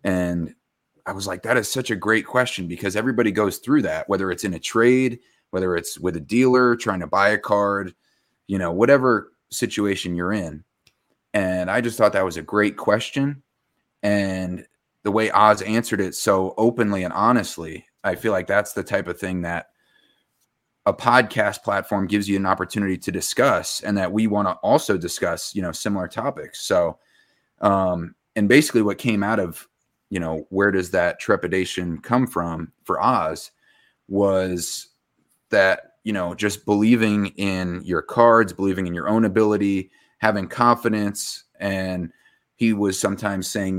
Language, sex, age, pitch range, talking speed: English, male, 30-49, 90-110 Hz, 170 wpm